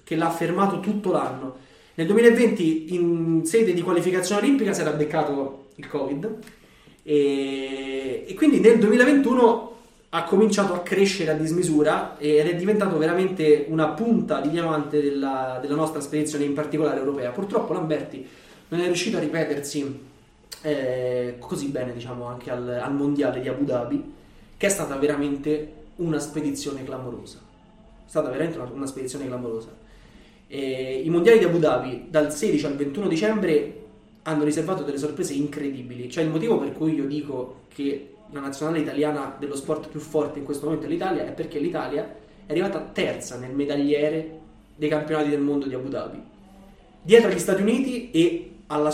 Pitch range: 140-180 Hz